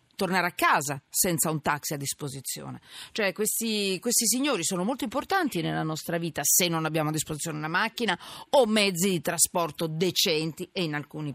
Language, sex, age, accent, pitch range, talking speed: Italian, female, 40-59, native, 165-225 Hz, 175 wpm